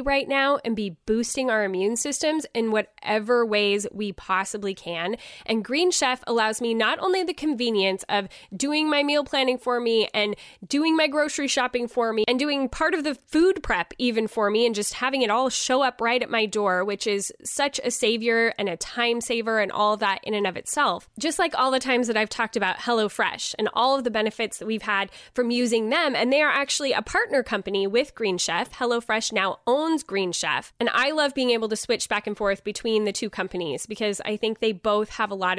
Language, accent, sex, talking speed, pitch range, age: English, American, female, 225 wpm, 210-255 Hz, 10-29